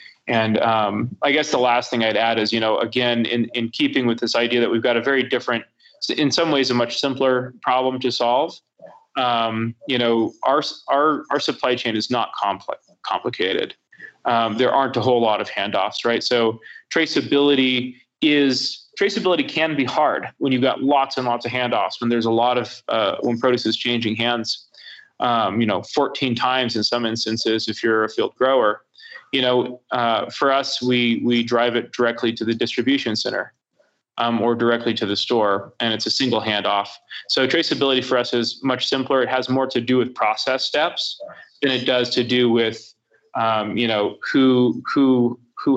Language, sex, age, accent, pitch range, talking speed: English, male, 20-39, American, 115-130 Hz, 190 wpm